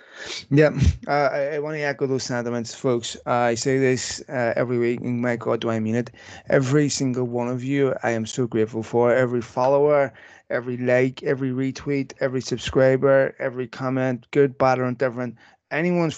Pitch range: 115-130 Hz